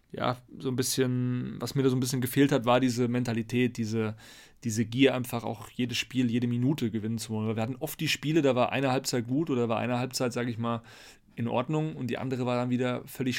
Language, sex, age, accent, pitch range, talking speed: German, male, 30-49, German, 120-135 Hz, 240 wpm